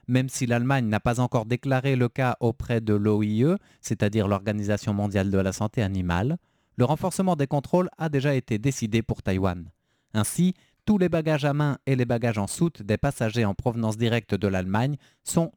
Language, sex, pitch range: French, male, 110-145 Hz